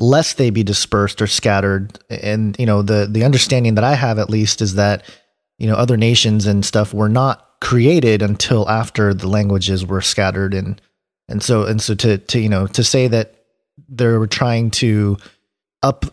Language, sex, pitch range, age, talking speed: English, male, 105-130 Hz, 30-49, 185 wpm